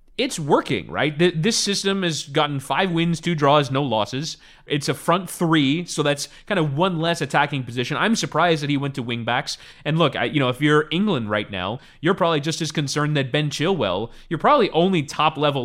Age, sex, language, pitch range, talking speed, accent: 30-49, male, English, 130-170 Hz, 205 wpm, American